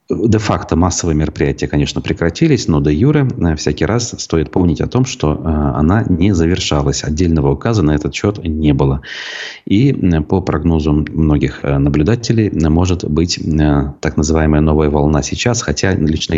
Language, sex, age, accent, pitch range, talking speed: Russian, male, 30-49, native, 75-95 Hz, 145 wpm